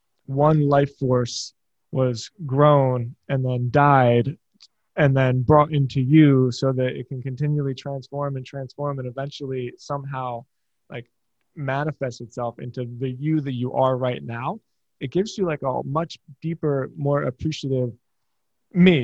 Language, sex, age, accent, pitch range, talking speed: English, male, 20-39, American, 125-145 Hz, 140 wpm